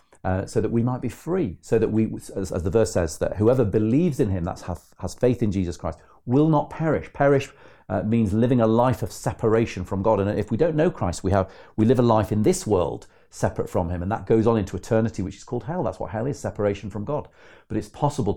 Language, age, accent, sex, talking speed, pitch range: English, 40-59, British, male, 250 wpm, 90-115 Hz